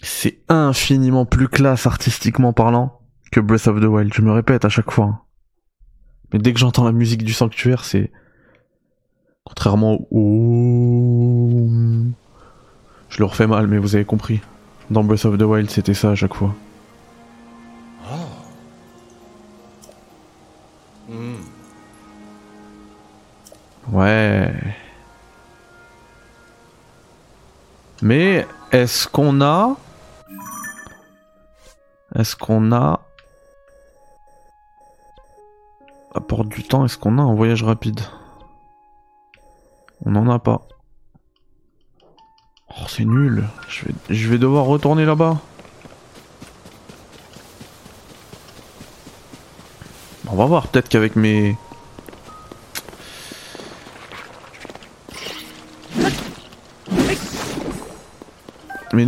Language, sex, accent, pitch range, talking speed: French, male, French, 105-135 Hz, 85 wpm